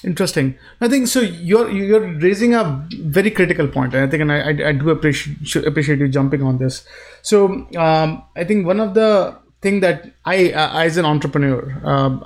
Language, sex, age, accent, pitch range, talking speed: English, male, 30-49, Indian, 140-180 Hz, 190 wpm